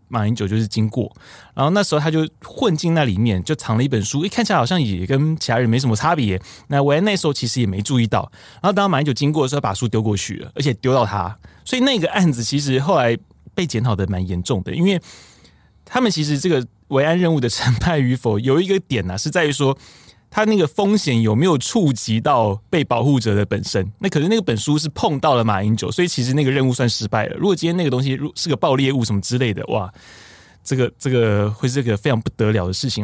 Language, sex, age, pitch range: Chinese, male, 20-39, 110-150 Hz